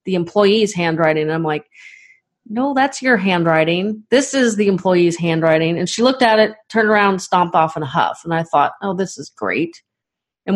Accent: American